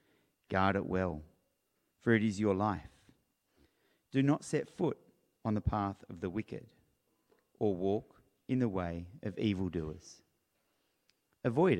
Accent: Australian